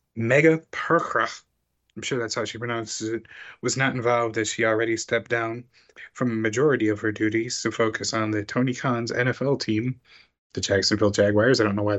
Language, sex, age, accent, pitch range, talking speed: English, male, 30-49, American, 105-115 Hz, 190 wpm